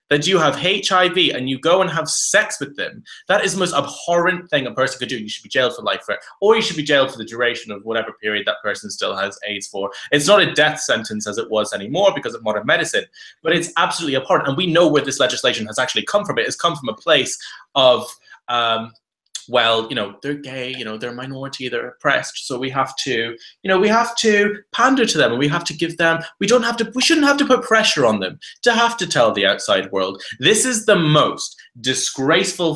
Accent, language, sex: British, English, male